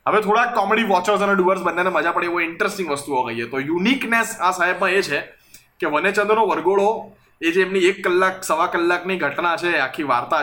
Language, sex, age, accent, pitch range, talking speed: Gujarati, male, 20-39, native, 165-220 Hz, 190 wpm